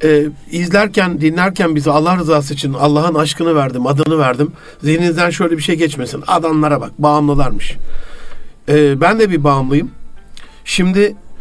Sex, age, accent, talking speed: male, 60-79, native, 135 wpm